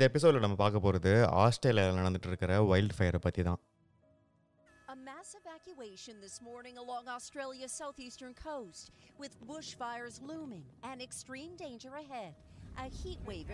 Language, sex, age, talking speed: Tamil, female, 40-59, 130 wpm